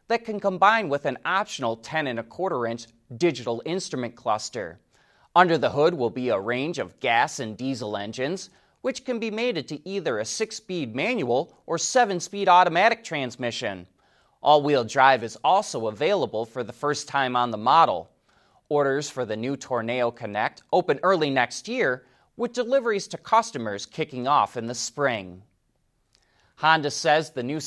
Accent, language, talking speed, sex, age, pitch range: American, English, 160 wpm, male, 30-49, 125-180 Hz